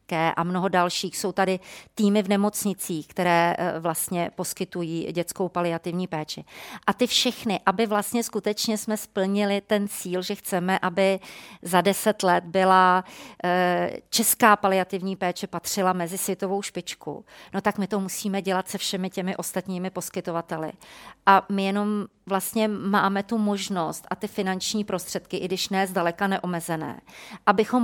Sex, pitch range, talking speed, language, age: female, 180-205 Hz, 140 wpm, Czech, 40-59